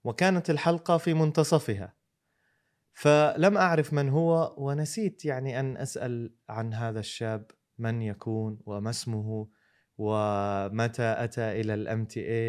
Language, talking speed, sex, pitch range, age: Arabic, 115 wpm, male, 115-155 Hz, 20-39